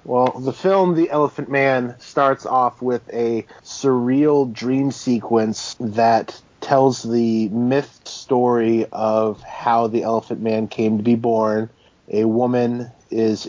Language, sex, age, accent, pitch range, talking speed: English, male, 30-49, American, 110-125 Hz, 135 wpm